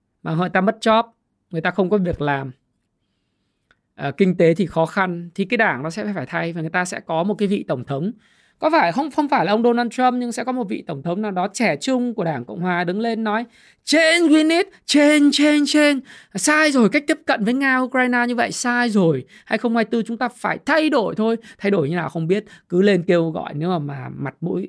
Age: 20-39